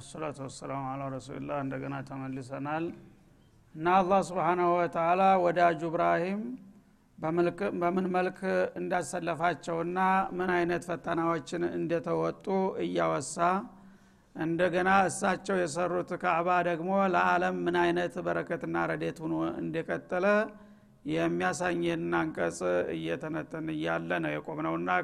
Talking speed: 90 wpm